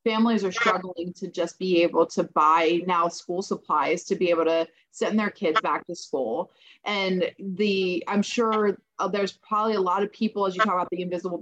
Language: English